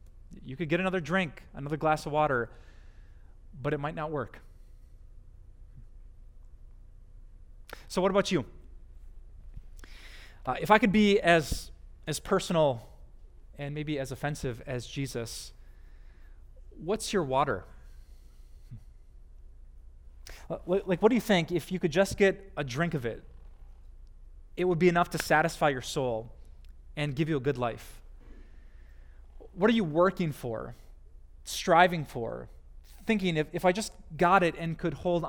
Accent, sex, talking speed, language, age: American, male, 135 wpm, English, 30-49